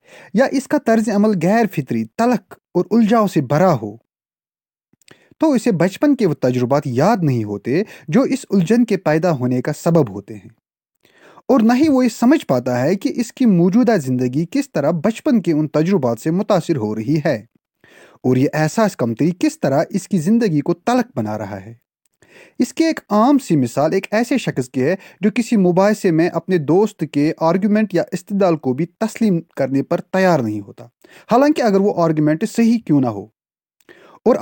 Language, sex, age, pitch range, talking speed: Urdu, male, 30-49, 135-225 Hz, 190 wpm